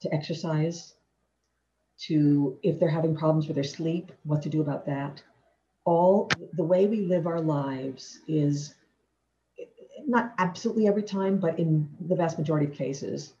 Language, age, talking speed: English, 50-69, 150 wpm